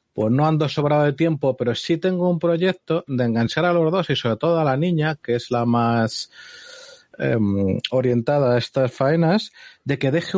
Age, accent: 30-49, Spanish